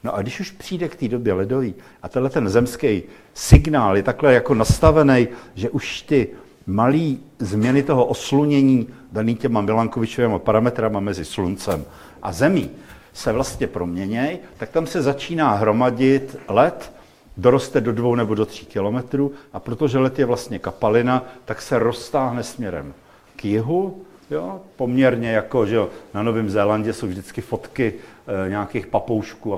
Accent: native